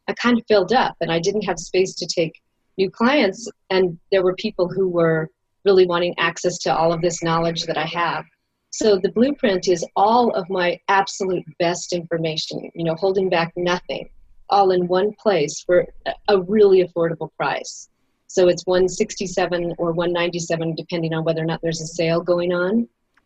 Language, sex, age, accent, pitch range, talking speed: English, female, 30-49, American, 170-200 Hz, 180 wpm